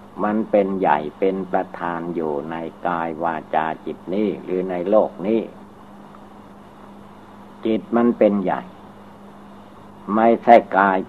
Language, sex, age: Thai, male, 60-79